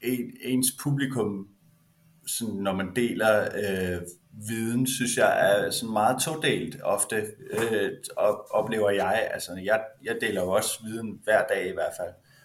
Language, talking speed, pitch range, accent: Danish, 140 wpm, 105-130 Hz, native